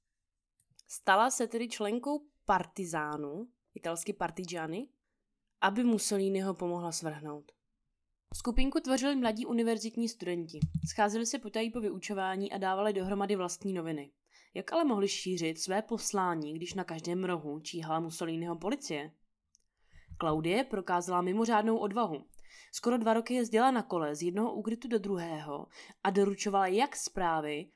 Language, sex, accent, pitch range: Czech, female, native, 165-230 Hz